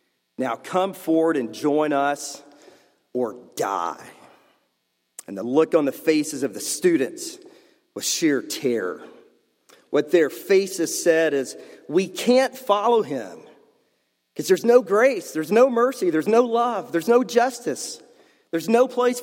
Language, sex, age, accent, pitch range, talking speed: English, male, 40-59, American, 140-225 Hz, 140 wpm